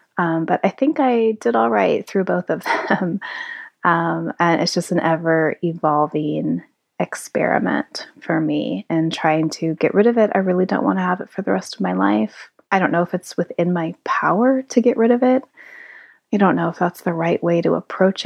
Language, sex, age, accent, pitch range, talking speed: English, female, 30-49, American, 165-235 Hz, 215 wpm